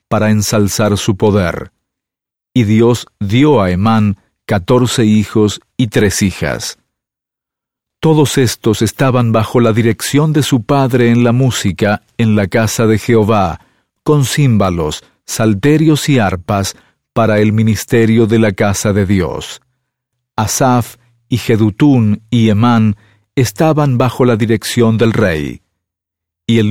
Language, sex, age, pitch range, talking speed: English, male, 50-69, 105-130 Hz, 130 wpm